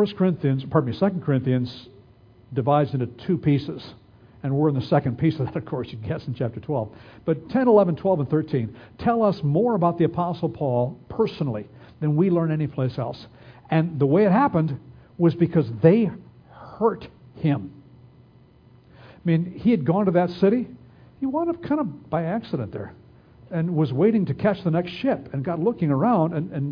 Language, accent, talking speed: English, American, 180 wpm